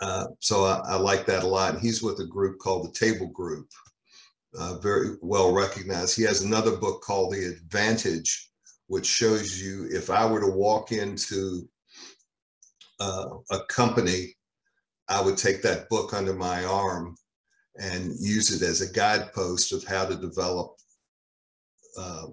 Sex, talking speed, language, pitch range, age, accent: male, 155 wpm, English, 95-110 Hz, 50-69, American